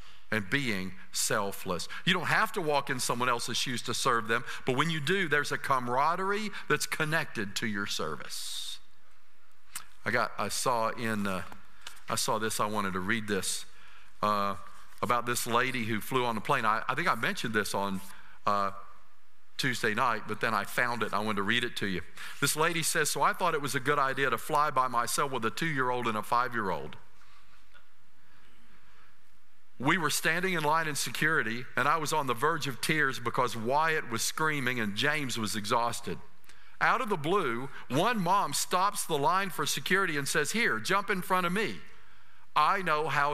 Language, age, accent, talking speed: English, 50-69, American, 190 wpm